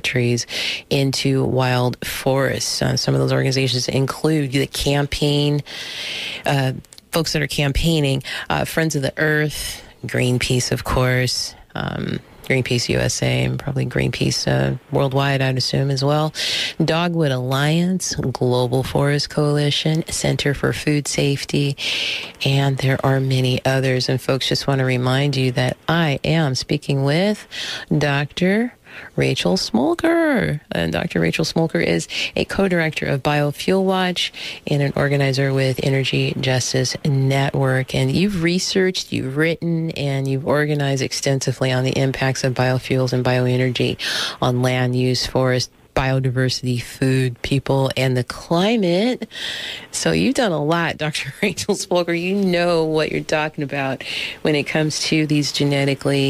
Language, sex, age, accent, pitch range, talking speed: English, female, 30-49, American, 130-165 Hz, 140 wpm